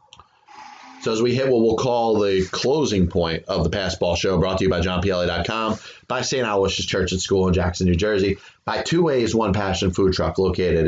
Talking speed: 205 wpm